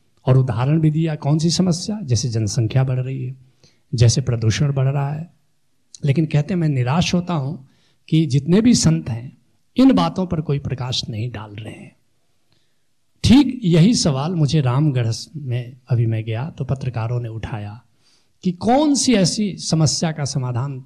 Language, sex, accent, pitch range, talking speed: English, male, Indian, 115-155 Hz, 160 wpm